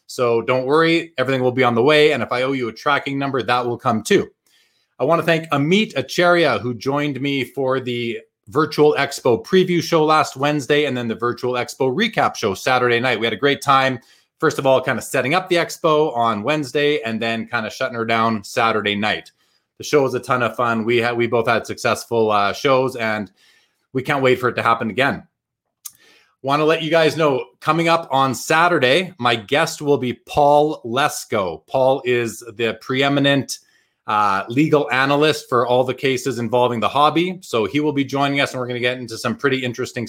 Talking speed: 210 wpm